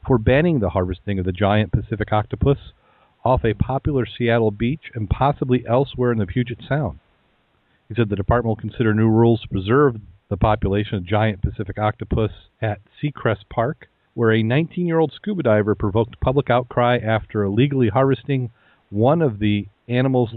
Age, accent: 40-59, American